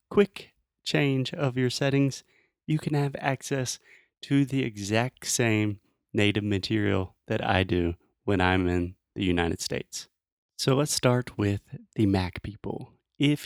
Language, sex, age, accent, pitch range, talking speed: Portuguese, male, 30-49, American, 100-135 Hz, 145 wpm